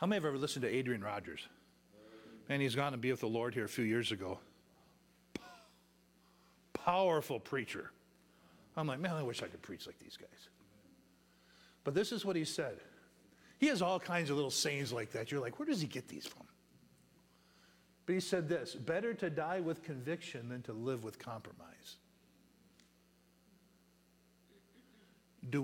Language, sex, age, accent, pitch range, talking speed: English, male, 50-69, American, 105-155 Hz, 170 wpm